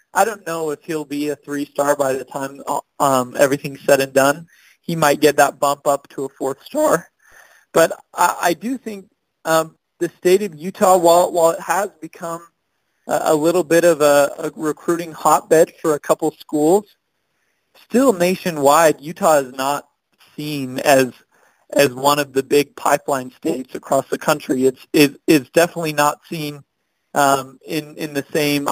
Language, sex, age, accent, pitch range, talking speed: English, male, 40-59, American, 140-165 Hz, 170 wpm